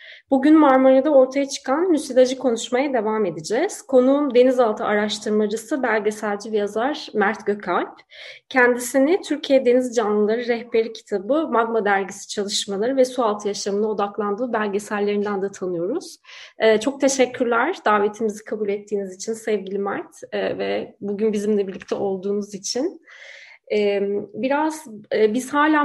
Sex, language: female, Turkish